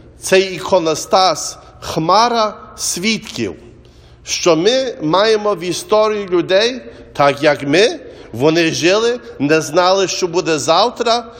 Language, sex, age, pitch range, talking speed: English, male, 50-69, 150-205 Hz, 110 wpm